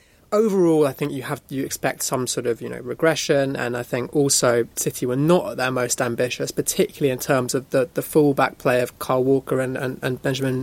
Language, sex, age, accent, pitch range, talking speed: English, male, 20-39, British, 125-150 Hz, 225 wpm